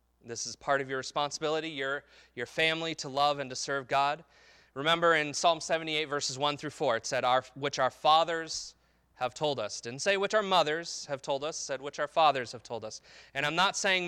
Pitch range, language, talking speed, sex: 120-155 Hz, English, 215 wpm, male